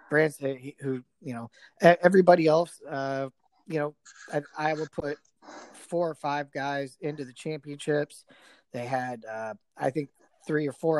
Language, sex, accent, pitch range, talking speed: English, male, American, 140-160 Hz, 140 wpm